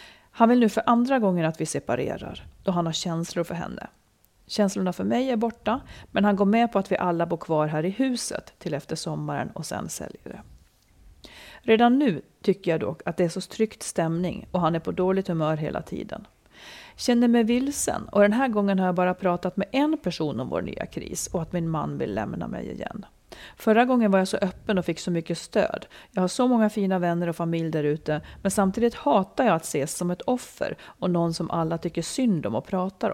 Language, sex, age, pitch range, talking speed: Swedish, female, 40-59, 170-225 Hz, 225 wpm